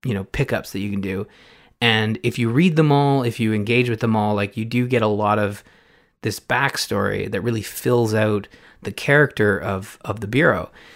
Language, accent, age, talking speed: English, American, 20-39, 210 wpm